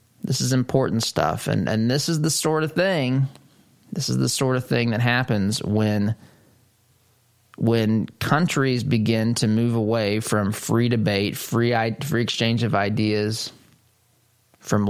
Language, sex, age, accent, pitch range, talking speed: English, male, 20-39, American, 105-125 Hz, 145 wpm